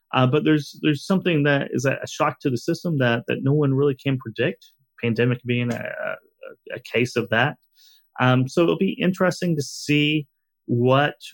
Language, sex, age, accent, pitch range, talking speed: English, male, 30-49, American, 130-180 Hz, 185 wpm